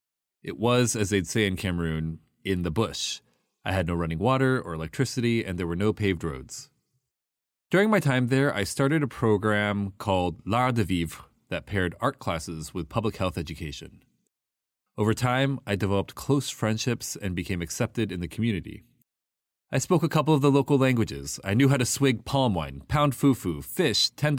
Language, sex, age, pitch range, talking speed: English, male, 30-49, 90-130 Hz, 180 wpm